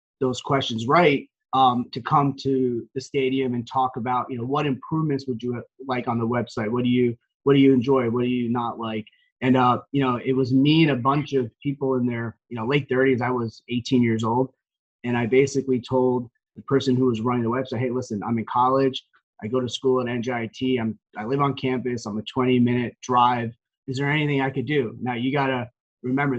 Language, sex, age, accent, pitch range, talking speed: English, male, 30-49, American, 120-135 Hz, 225 wpm